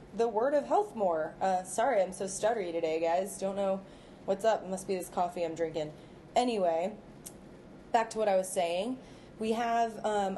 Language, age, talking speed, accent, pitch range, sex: English, 20-39, 190 wpm, American, 170-210 Hz, female